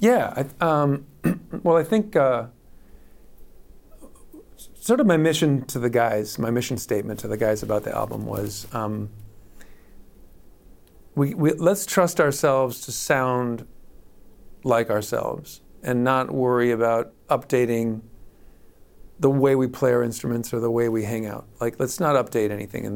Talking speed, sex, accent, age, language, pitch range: 145 wpm, male, American, 40-59, English, 105-130 Hz